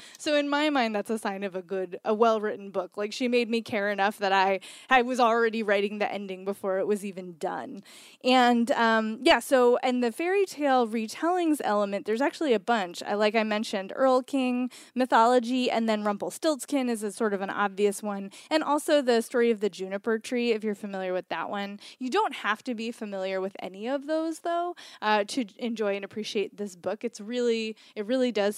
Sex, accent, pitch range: female, American, 205-260 Hz